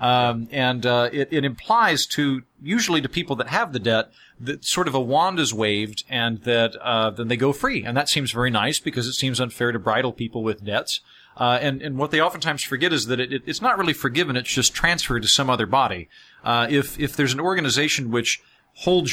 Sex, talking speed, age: male, 225 wpm, 40-59